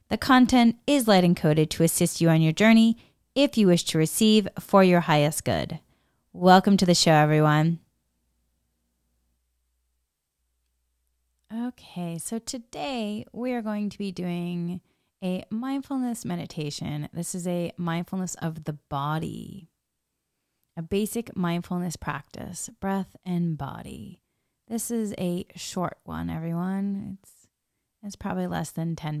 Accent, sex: American, female